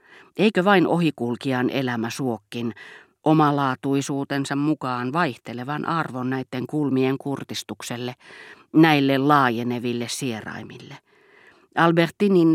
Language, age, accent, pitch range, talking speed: Finnish, 40-59, native, 125-165 Hz, 75 wpm